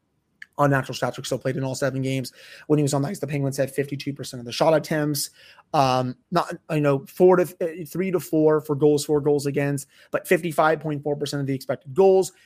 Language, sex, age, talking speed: English, male, 20-39, 215 wpm